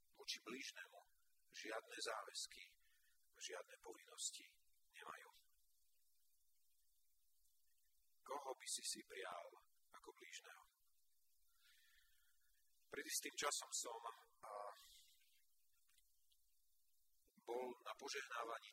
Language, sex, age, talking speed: Slovak, male, 50-69, 75 wpm